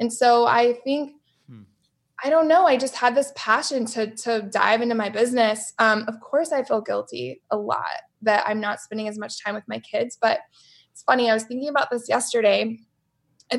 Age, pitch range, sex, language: 20-39, 210-245 Hz, female, English